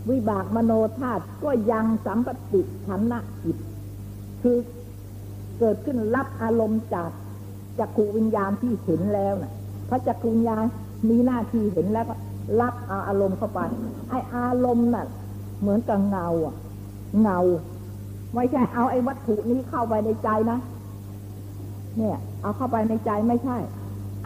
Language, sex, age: Thai, female, 60-79